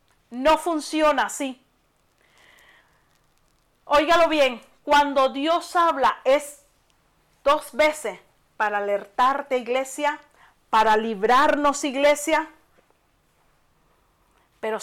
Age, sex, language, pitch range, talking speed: 40-59, female, Spanish, 250-305 Hz, 75 wpm